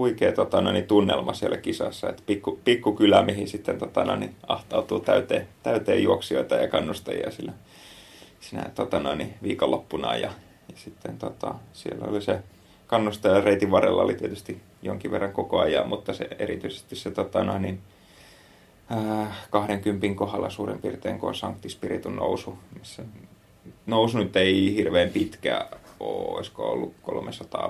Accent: native